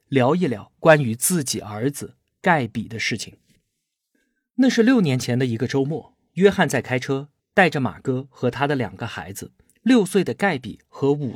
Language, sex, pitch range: Chinese, male, 120-195 Hz